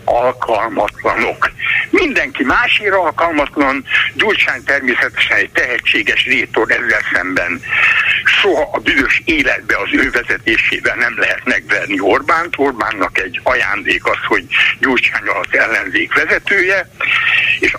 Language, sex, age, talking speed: Hungarian, male, 60-79, 110 wpm